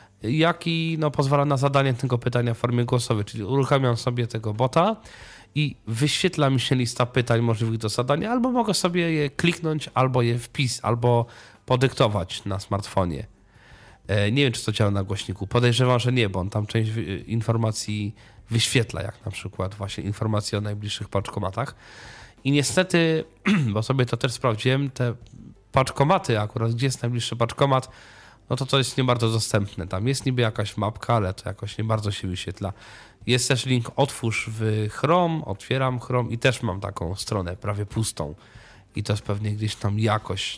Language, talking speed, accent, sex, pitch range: Polish, 170 wpm, native, male, 105-135 Hz